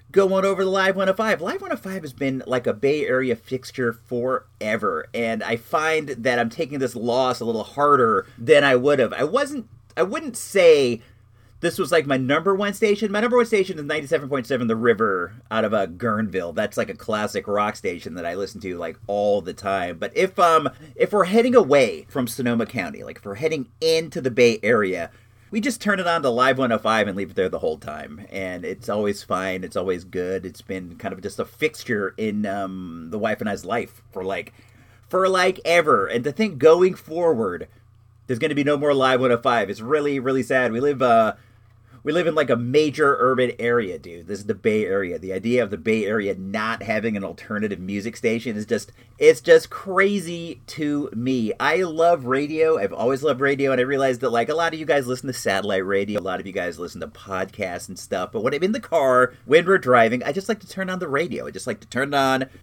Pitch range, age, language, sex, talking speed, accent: 115-165 Hz, 40-59, English, male, 225 wpm, American